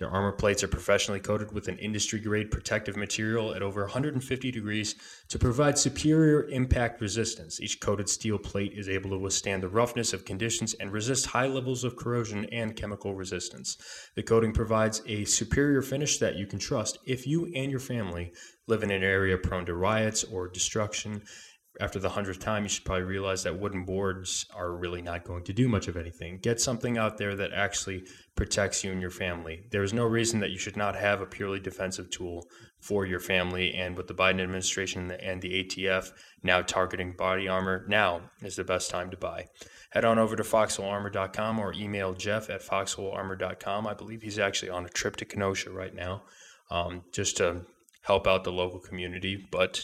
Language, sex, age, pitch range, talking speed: English, male, 20-39, 95-110 Hz, 195 wpm